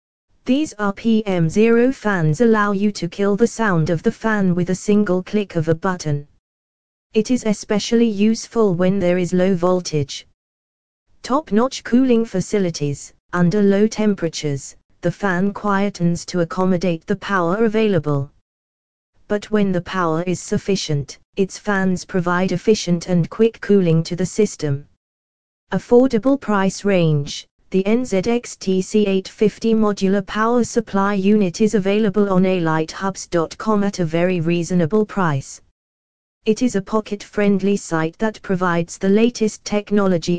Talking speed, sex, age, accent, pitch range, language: 130 wpm, female, 20-39, British, 165-210 Hz, English